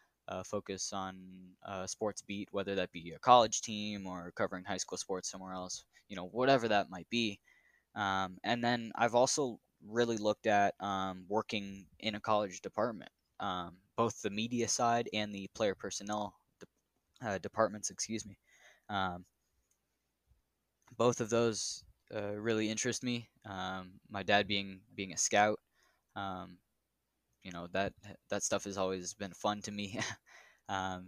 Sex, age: male, 10-29